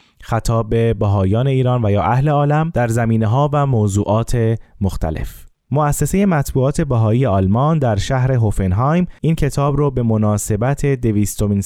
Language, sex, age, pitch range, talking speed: Persian, male, 20-39, 105-135 Hz, 135 wpm